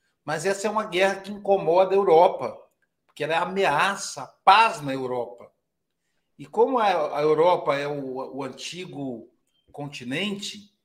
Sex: male